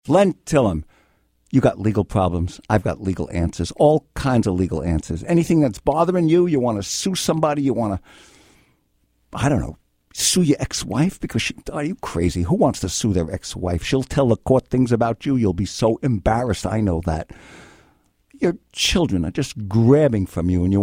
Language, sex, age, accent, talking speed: English, male, 60-79, American, 195 wpm